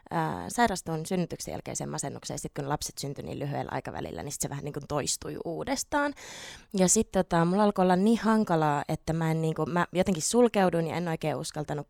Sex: female